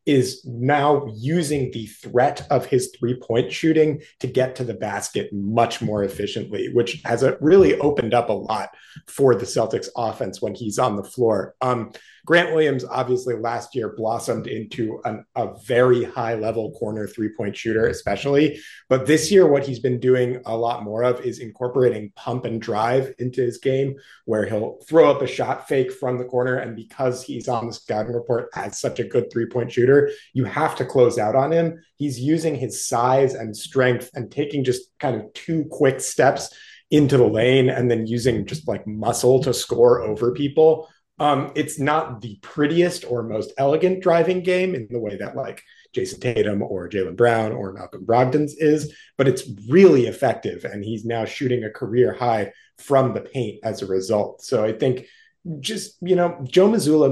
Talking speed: 180 wpm